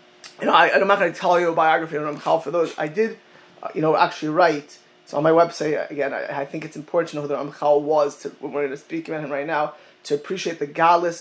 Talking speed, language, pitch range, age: 285 wpm, English, 155-185 Hz, 20-39